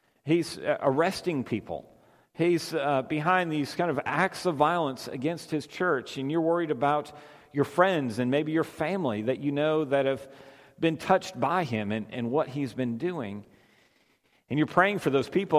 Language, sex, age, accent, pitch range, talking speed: English, male, 50-69, American, 120-150 Hz, 175 wpm